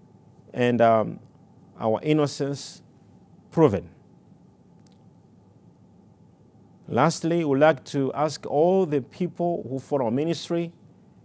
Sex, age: male, 50-69